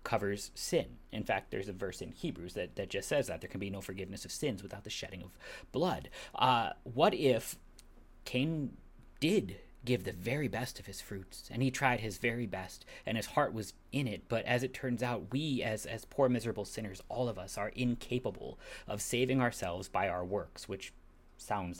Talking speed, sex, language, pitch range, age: 205 wpm, male, English, 95-125 Hz, 30-49